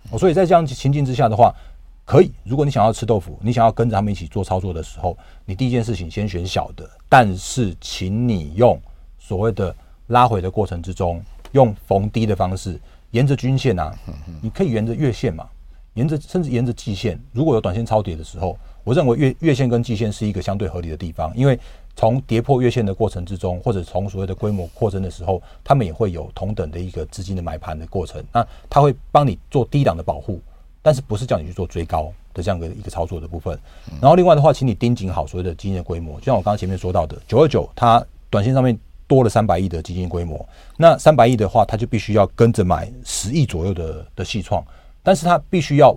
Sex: male